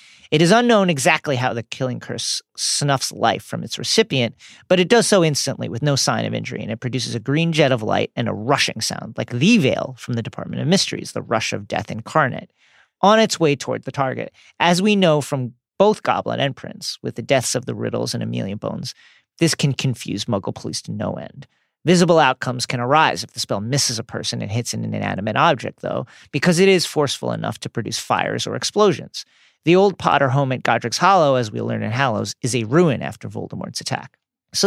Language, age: English, 40-59